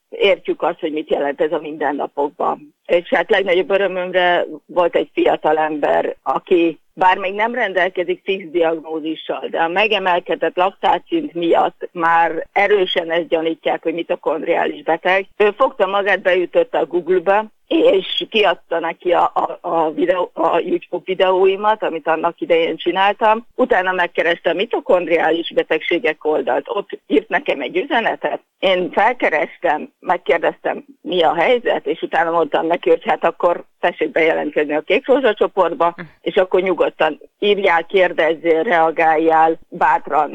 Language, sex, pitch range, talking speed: Hungarian, female, 170-225 Hz, 135 wpm